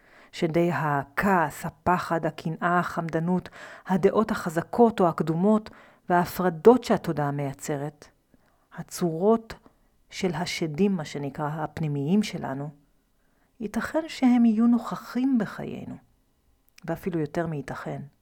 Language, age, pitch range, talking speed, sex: Hebrew, 40-59, 160-210 Hz, 90 wpm, female